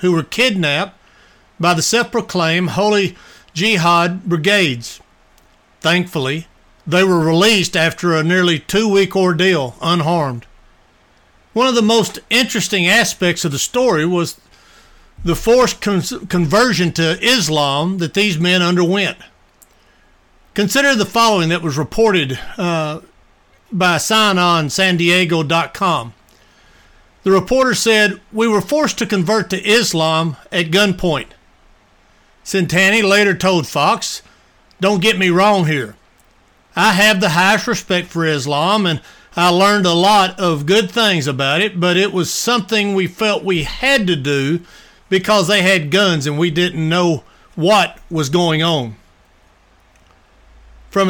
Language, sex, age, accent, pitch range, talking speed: English, male, 60-79, American, 160-205 Hz, 130 wpm